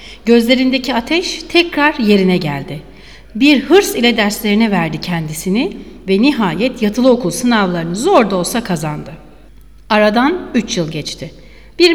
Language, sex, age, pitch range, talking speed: Turkish, female, 60-79, 185-275 Hz, 120 wpm